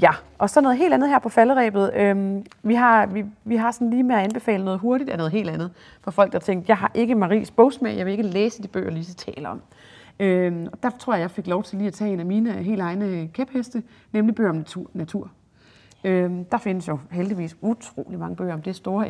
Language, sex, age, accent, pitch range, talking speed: Danish, female, 30-49, native, 185-230 Hz, 235 wpm